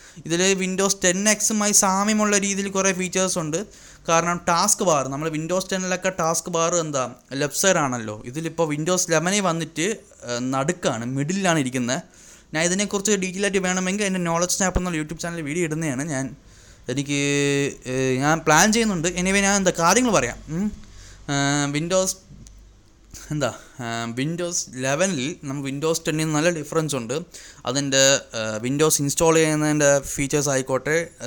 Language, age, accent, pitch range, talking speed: Malayalam, 20-39, native, 135-180 Hz, 125 wpm